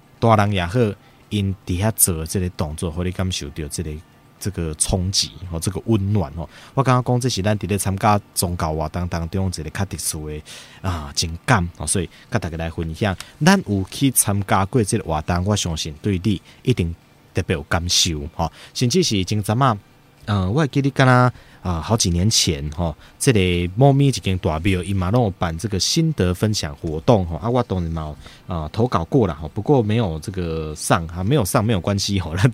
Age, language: 20-39, Chinese